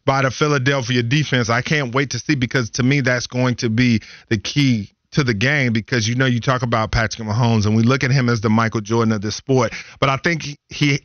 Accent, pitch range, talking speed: American, 115-145 Hz, 245 wpm